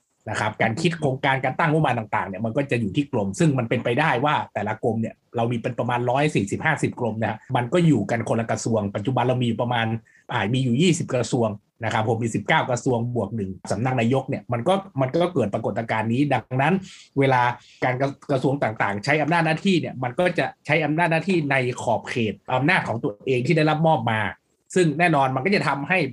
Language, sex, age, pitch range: Thai, male, 20-39, 120-160 Hz